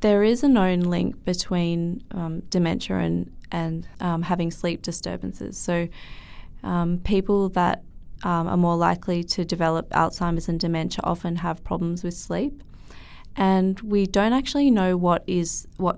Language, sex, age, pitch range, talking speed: English, female, 20-39, 165-185 Hz, 150 wpm